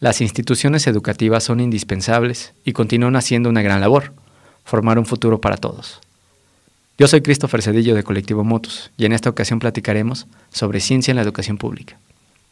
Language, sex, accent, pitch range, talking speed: Spanish, male, Mexican, 105-130 Hz, 165 wpm